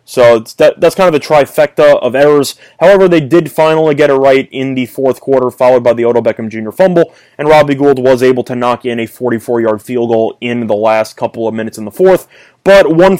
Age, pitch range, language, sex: 20-39, 120-155 Hz, English, male